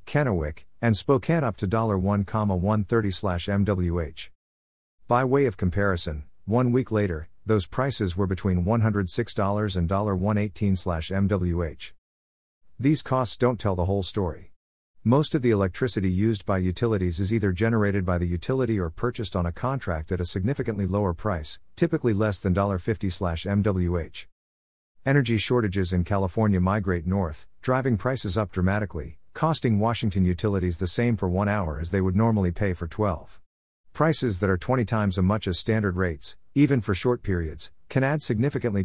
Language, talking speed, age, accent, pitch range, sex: English, 150 wpm, 50-69, American, 90-115 Hz, male